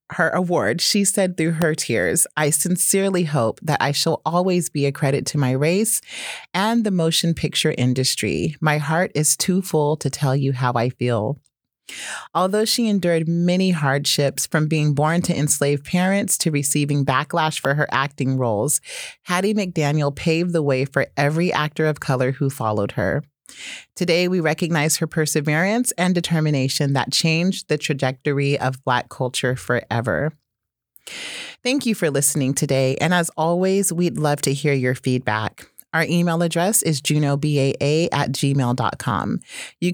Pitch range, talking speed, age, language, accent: 135-175 Hz, 155 wpm, 30-49, English, American